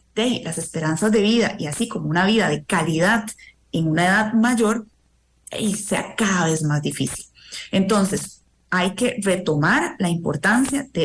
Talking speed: 160 wpm